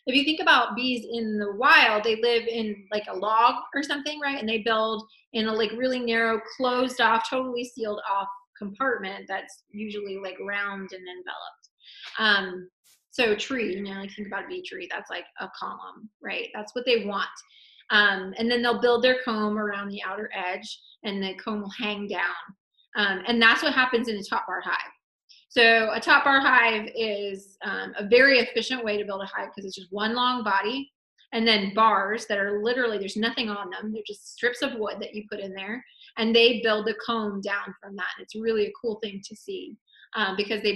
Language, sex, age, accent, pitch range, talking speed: English, female, 20-39, American, 200-235 Hz, 210 wpm